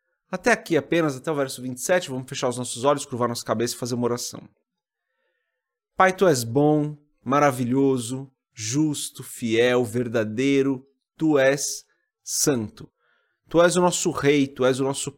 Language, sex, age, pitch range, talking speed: Portuguese, male, 30-49, 120-150 Hz, 155 wpm